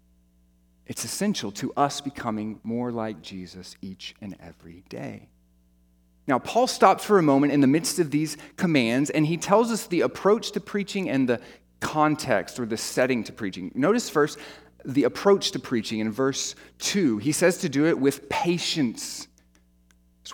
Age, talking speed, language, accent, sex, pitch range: 30-49, 170 wpm, English, American, male, 115-175 Hz